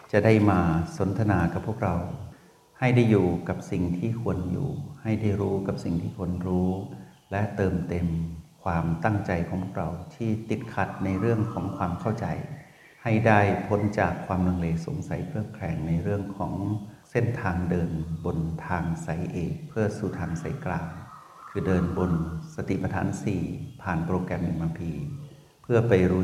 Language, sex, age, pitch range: Thai, male, 60-79, 90-110 Hz